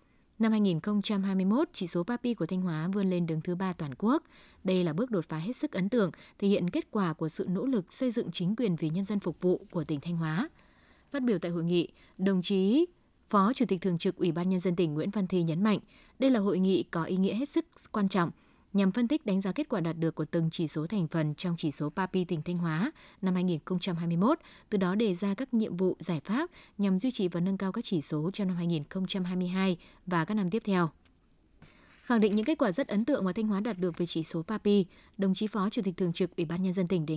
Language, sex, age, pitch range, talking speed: Vietnamese, female, 20-39, 170-215 Hz, 255 wpm